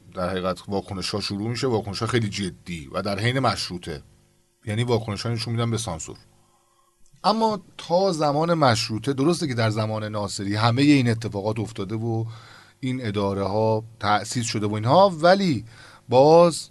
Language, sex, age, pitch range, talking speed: Persian, male, 40-59, 105-140 Hz, 155 wpm